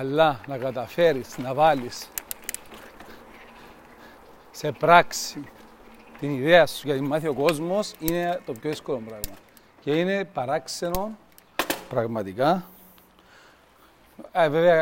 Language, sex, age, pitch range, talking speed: Greek, male, 40-59, 140-180 Hz, 100 wpm